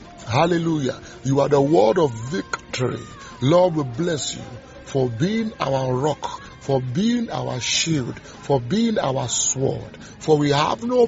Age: 50-69